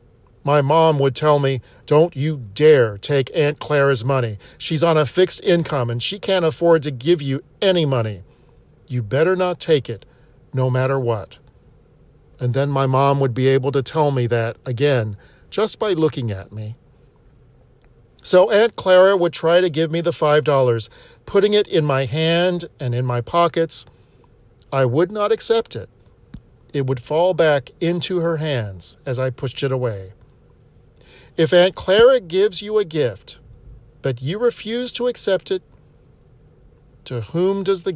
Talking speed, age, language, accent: 165 wpm, 40-59, English, American